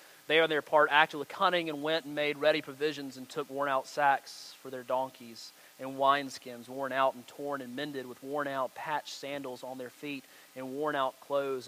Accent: American